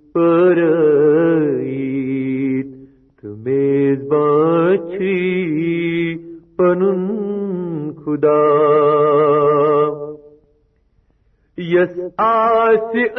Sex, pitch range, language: male, 150-235 Hz, Urdu